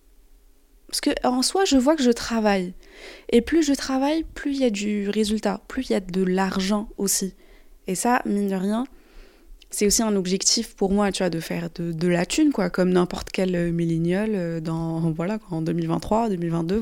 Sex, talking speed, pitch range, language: female, 195 wpm, 190-245 Hz, French